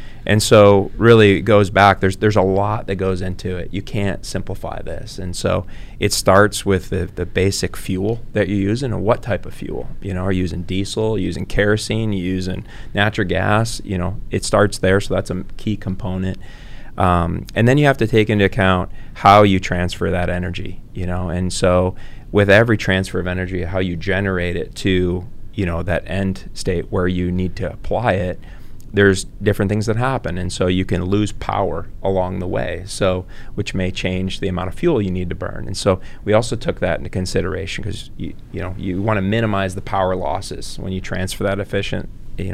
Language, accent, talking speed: English, American, 210 wpm